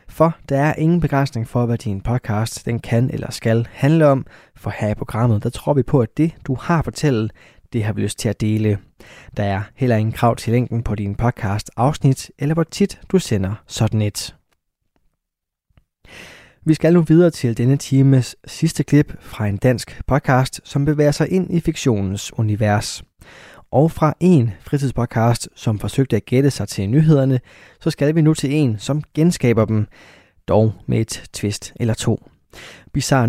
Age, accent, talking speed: 20-39, native, 180 wpm